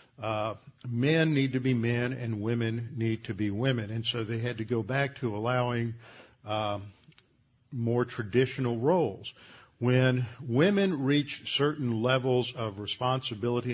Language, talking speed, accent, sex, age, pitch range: English, 140 wpm, American, male, 50-69, 110-130 Hz